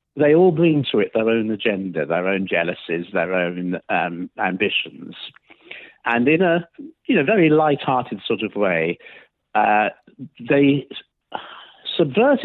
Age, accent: 50-69, British